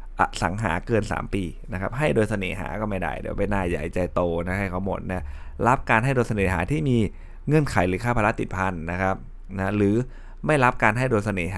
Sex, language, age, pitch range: male, Thai, 20-39, 90-110 Hz